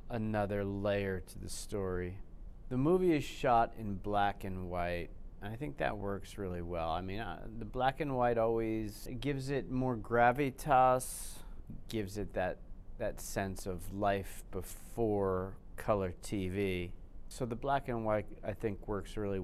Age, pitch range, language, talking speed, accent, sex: 40-59, 90-115 Hz, English, 155 wpm, American, male